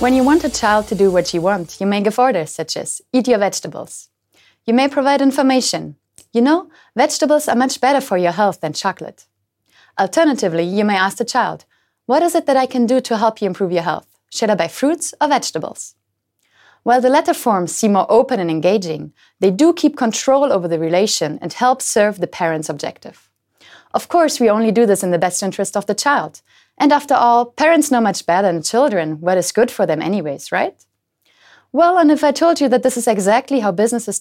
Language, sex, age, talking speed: French, female, 20-39, 215 wpm